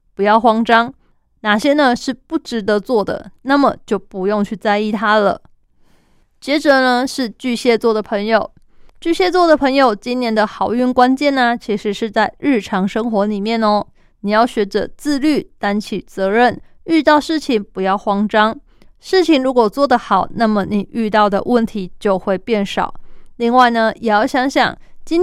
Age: 20-39